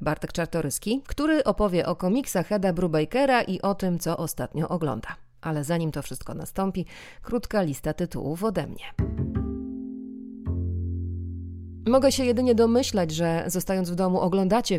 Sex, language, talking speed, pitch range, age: female, Polish, 135 wpm, 165-220 Hz, 30-49